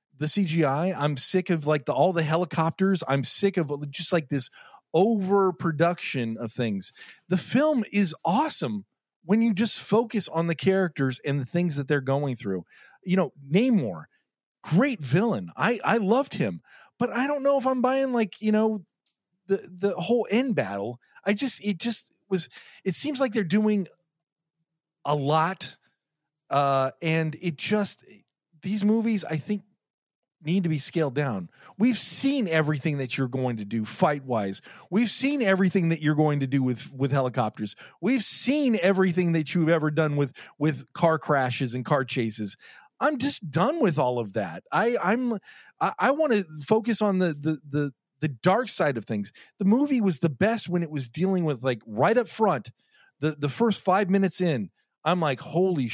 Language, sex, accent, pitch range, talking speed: English, male, American, 145-205 Hz, 180 wpm